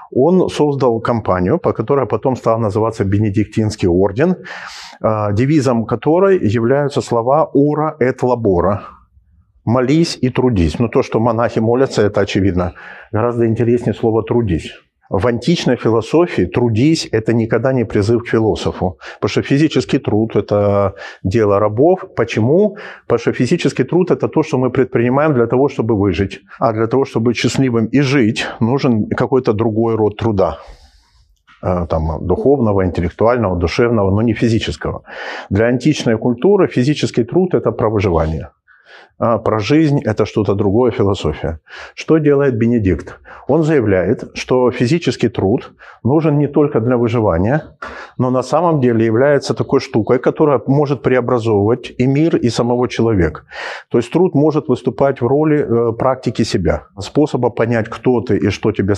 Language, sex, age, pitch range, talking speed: Ukrainian, male, 40-59, 110-140 Hz, 145 wpm